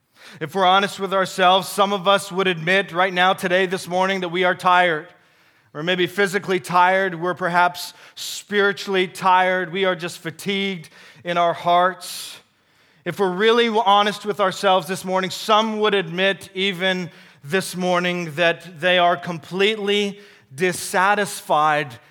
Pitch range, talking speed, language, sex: 150-195 Hz, 145 wpm, English, male